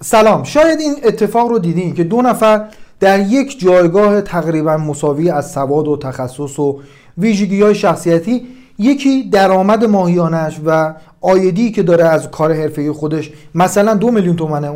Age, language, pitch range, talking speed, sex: 40-59, Persian, 155-220 Hz, 150 wpm, male